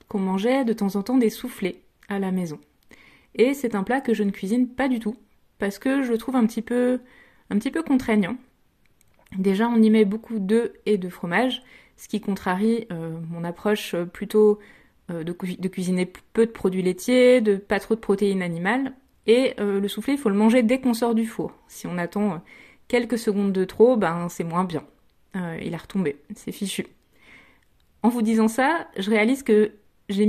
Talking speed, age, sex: 205 wpm, 20-39, female